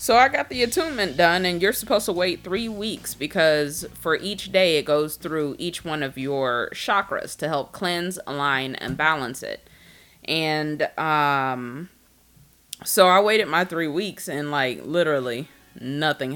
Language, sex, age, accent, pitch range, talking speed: English, female, 20-39, American, 140-190 Hz, 160 wpm